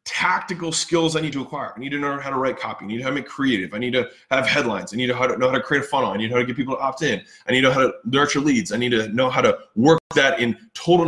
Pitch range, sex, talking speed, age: 125-160 Hz, male, 325 wpm, 20-39